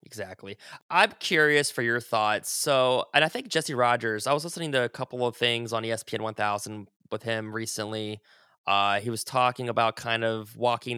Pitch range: 110-130 Hz